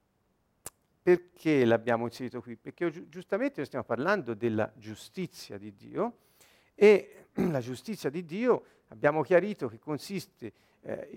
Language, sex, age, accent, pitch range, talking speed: Italian, male, 50-69, native, 125-200 Hz, 125 wpm